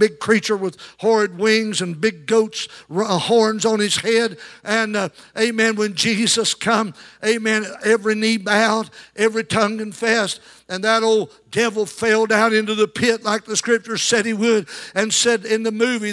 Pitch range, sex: 220-255 Hz, male